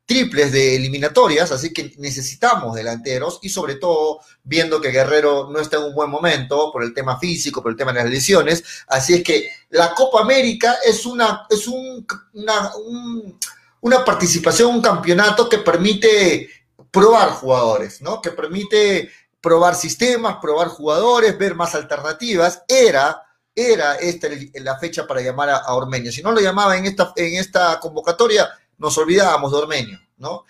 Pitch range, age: 135-205 Hz, 40-59